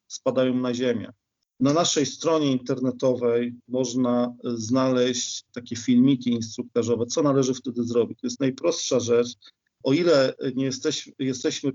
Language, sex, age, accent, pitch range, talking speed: Polish, male, 40-59, native, 120-140 Hz, 125 wpm